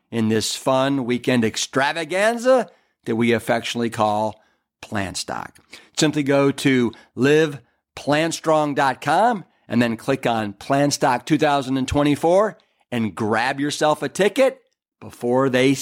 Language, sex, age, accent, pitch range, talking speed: English, male, 50-69, American, 110-140 Hz, 100 wpm